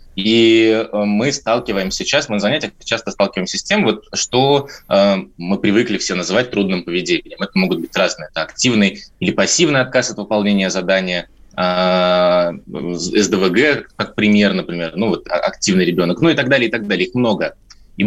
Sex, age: male, 20-39